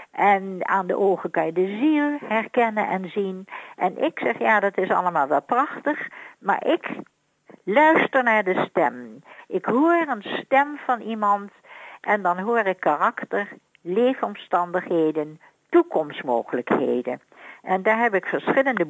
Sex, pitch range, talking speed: female, 175-245 Hz, 140 wpm